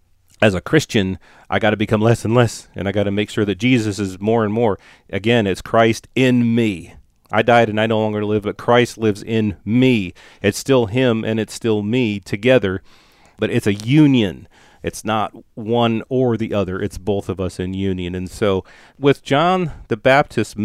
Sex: male